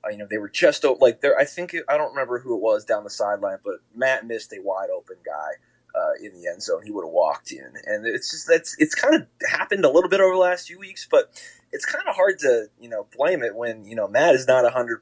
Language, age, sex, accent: English, 20-39, male, American